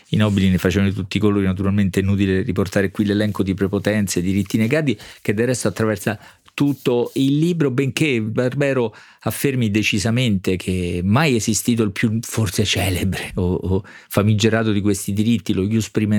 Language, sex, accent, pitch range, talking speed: Italian, male, native, 90-110 Hz, 160 wpm